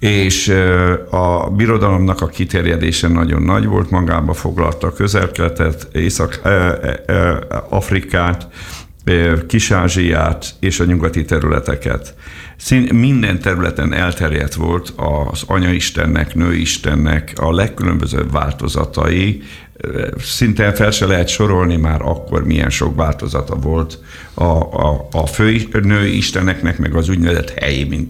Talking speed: 110 wpm